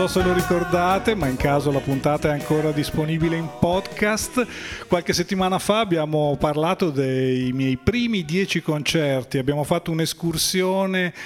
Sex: male